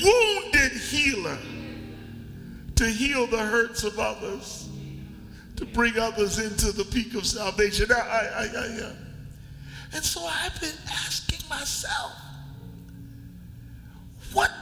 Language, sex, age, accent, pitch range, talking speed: English, male, 50-69, American, 180-265 Hz, 95 wpm